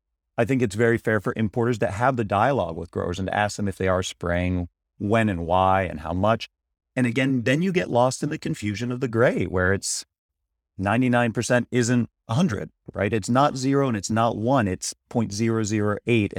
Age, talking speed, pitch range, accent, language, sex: 40-59, 200 wpm, 90-120 Hz, American, English, male